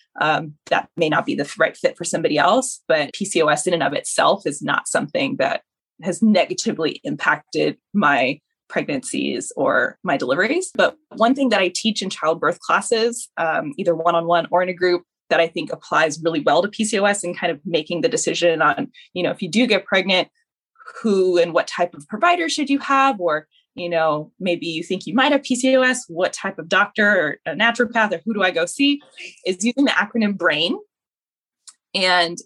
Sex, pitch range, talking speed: female, 175-240 Hz, 200 wpm